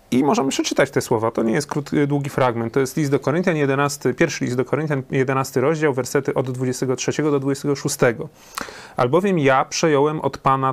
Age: 30-49